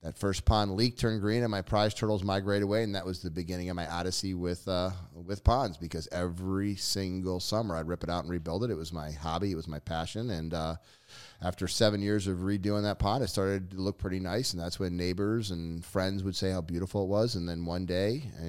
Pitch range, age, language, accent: 85-105 Hz, 30-49, English, American